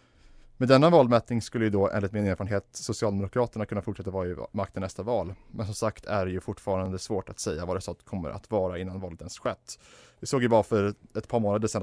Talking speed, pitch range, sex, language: 235 wpm, 100-120 Hz, male, Swedish